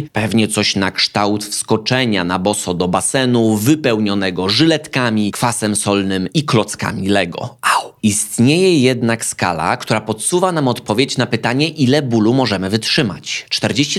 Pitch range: 105-150 Hz